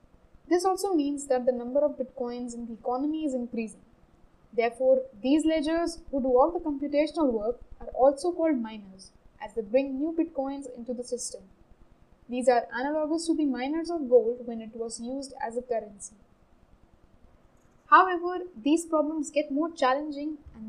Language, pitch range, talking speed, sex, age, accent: English, 245-295 Hz, 160 wpm, female, 10-29, Indian